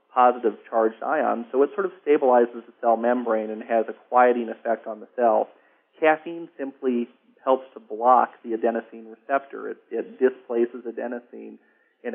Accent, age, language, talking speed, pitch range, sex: American, 40-59, English, 160 wpm, 115-130 Hz, male